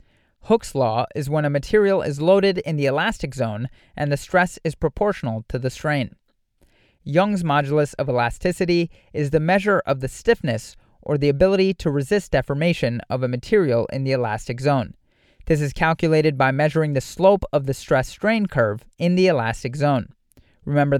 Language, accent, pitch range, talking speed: English, American, 130-175 Hz, 170 wpm